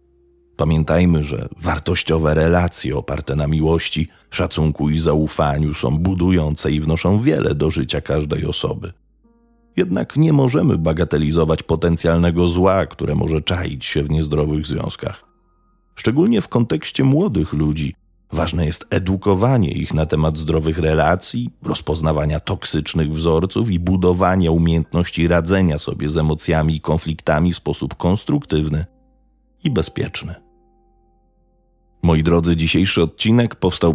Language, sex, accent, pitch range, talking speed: Polish, male, native, 75-90 Hz, 120 wpm